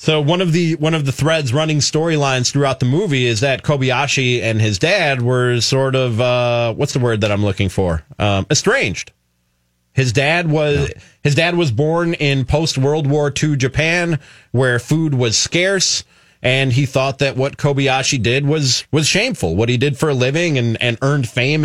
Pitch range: 125-155 Hz